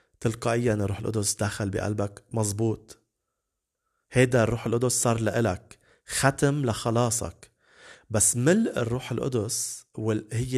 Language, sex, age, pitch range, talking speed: English, male, 30-49, 105-125 Hz, 100 wpm